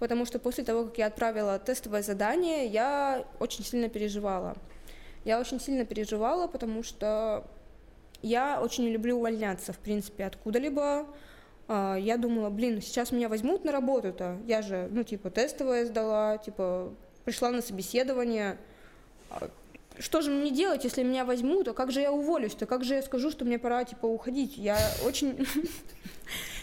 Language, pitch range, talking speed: Russian, 200-250 Hz, 150 wpm